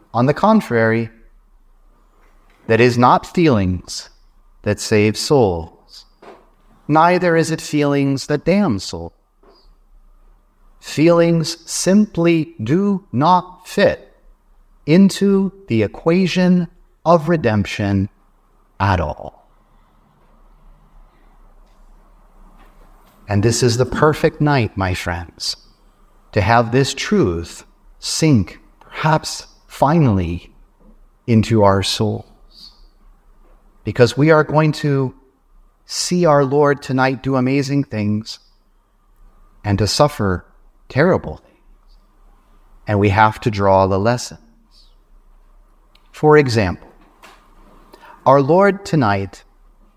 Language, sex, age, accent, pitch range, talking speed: English, male, 30-49, American, 100-155 Hz, 90 wpm